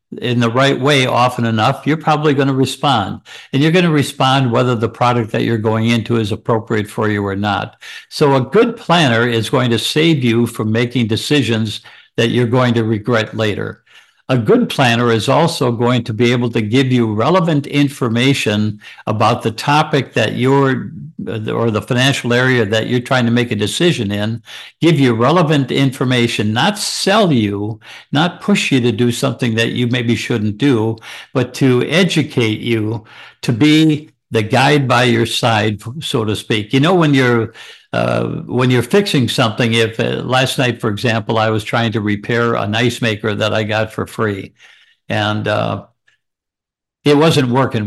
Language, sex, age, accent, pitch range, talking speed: English, male, 60-79, American, 110-135 Hz, 180 wpm